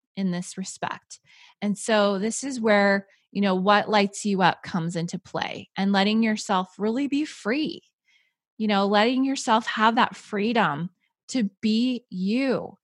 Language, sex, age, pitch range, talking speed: English, female, 20-39, 185-225 Hz, 155 wpm